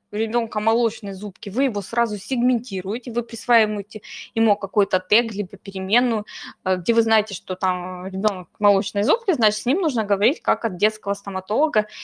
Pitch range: 200-250 Hz